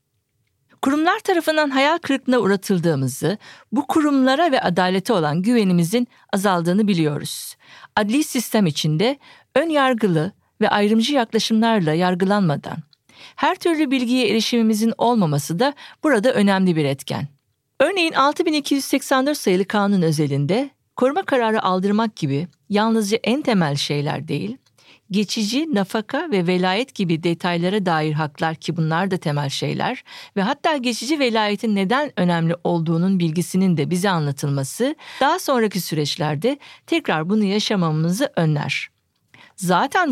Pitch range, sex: 160-255 Hz, female